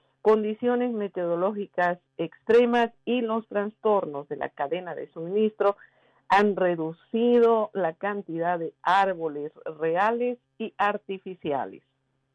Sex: female